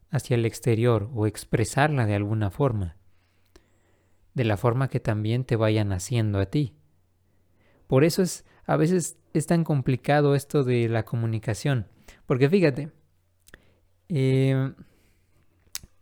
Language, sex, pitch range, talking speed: Spanish, male, 105-150 Hz, 125 wpm